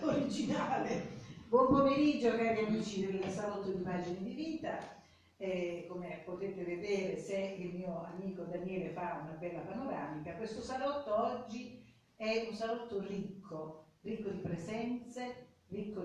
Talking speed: 130 wpm